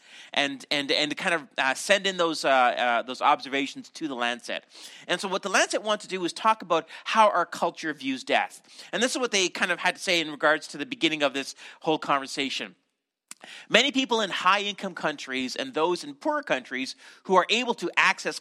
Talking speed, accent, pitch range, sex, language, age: 220 wpm, American, 155-230 Hz, male, English, 40-59